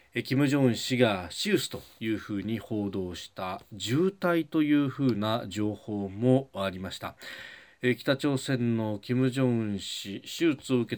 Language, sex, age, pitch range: Japanese, male, 40-59, 105-145 Hz